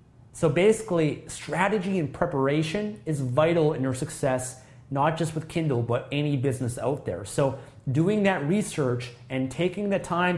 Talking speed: 155 wpm